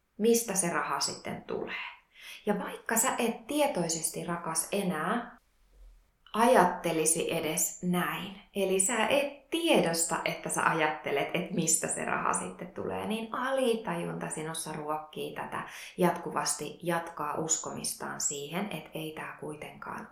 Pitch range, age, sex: 155-220 Hz, 20-39, female